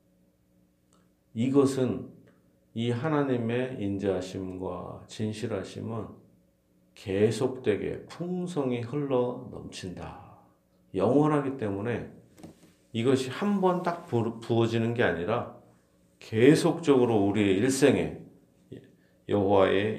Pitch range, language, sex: 90-120 Hz, Korean, male